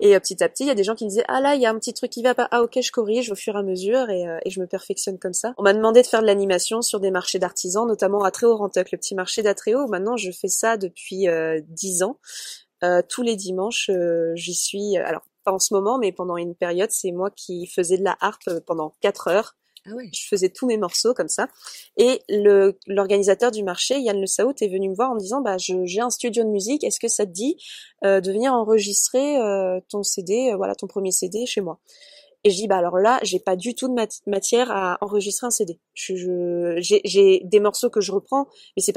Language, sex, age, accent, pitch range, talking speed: French, female, 20-39, French, 190-240 Hz, 265 wpm